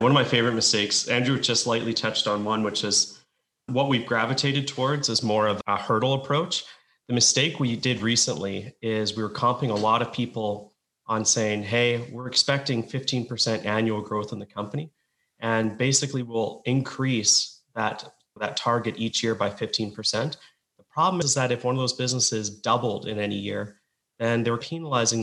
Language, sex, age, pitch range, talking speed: English, male, 30-49, 110-130 Hz, 180 wpm